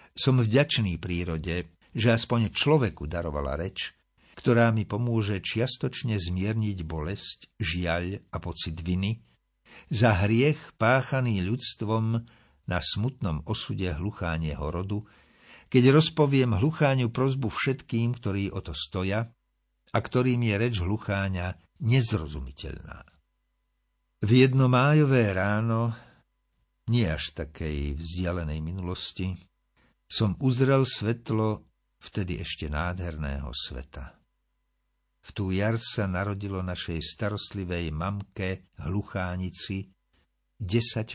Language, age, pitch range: Slovak, 50-69, 85-115 Hz